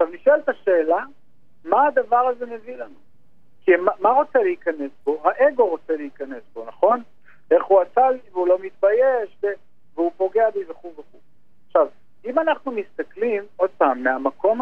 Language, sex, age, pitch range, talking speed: Hebrew, male, 50-69, 165-255 Hz, 165 wpm